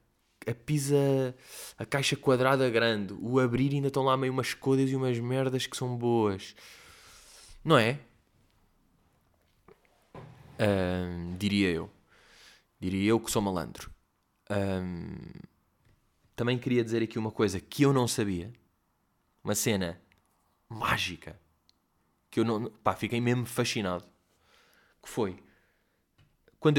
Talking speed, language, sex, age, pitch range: 120 wpm, Portuguese, male, 20-39, 95-125 Hz